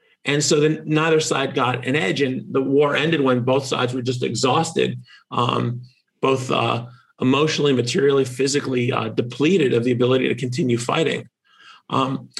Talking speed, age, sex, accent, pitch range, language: 155 wpm, 40-59, male, American, 125-155 Hz, Polish